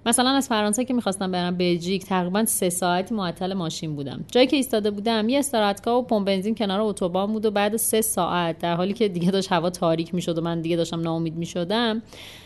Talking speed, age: 200 wpm, 30-49